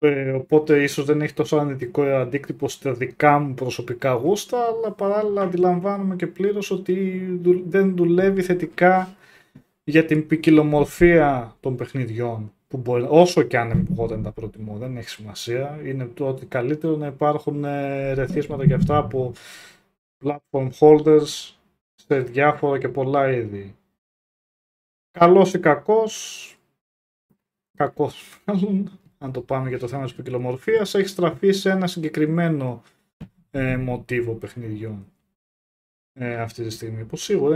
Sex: male